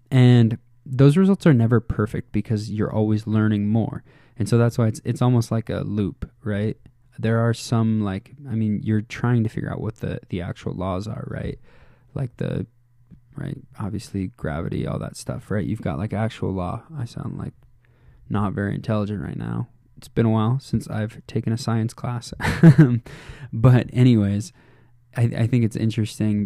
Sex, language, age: male, English, 20-39